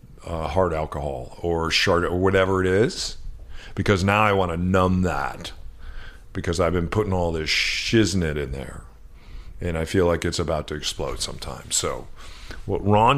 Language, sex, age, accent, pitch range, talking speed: English, male, 40-59, American, 80-110 Hz, 170 wpm